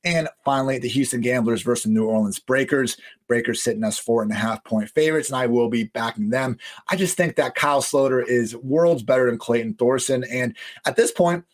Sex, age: male, 30-49